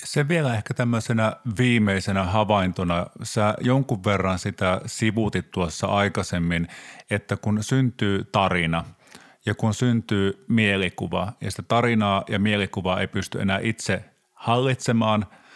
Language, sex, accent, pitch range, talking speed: Finnish, male, native, 95-120 Hz, 125 wpm